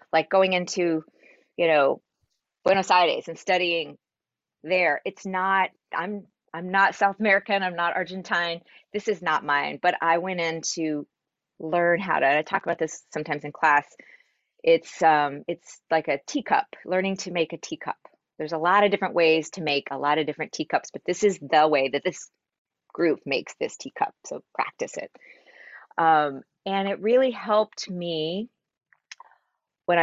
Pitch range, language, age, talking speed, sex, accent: 160-195 Hz, English, 30-49, 170 wpm, female, American